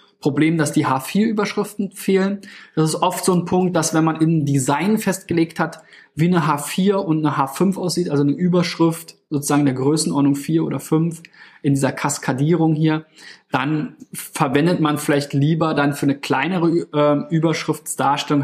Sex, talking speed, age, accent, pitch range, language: male, 160 wpm, 20-39, German, 140-175 Hz, German